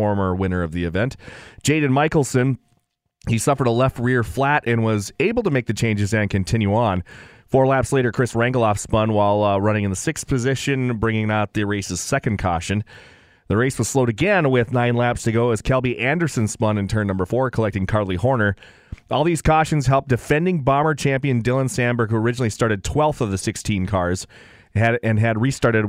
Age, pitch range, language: 30-49, 105-130 Hz, English